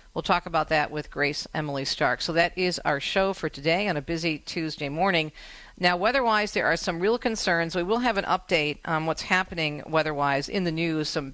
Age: 50-69